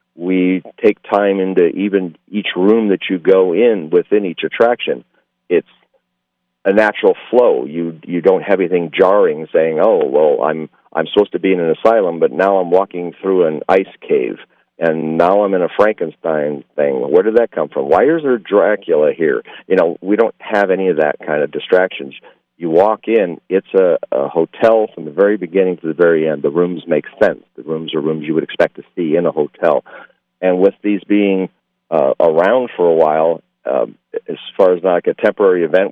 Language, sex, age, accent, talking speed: English, male, 50-69, American, 200 wpm